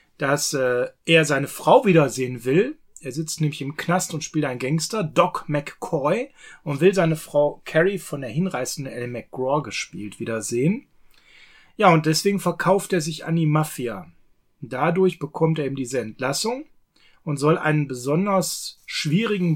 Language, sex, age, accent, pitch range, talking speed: German, male, 30-49, German, 145-185 Hz, 155 wpm